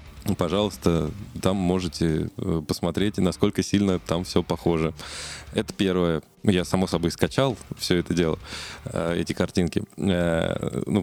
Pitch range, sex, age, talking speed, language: 85-100 Hz, male, 20-39, 115 wpm, Russian